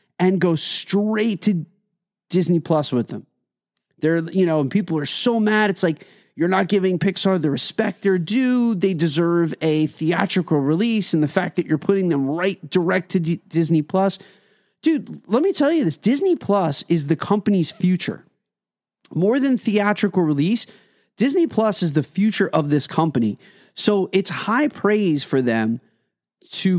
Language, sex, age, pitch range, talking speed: English, male, 30-49, 155-205 Hz, 165 wpm